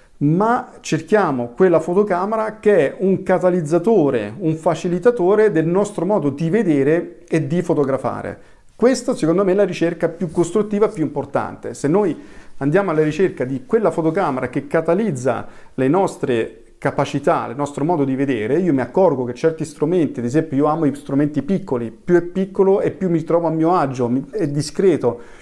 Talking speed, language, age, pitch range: 170 wpm, Italian, 40-59, 135-190 Hz